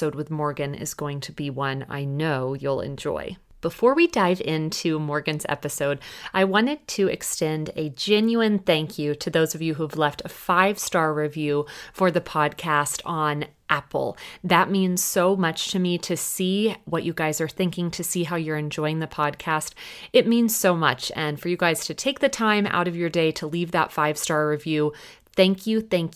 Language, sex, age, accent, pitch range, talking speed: English, female, 30-49, American, 150-185 Hz, 195 wpm